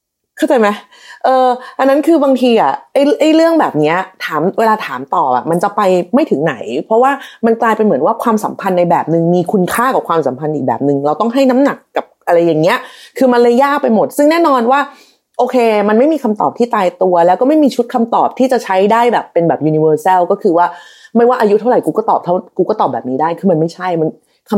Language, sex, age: Thai, female, 30-49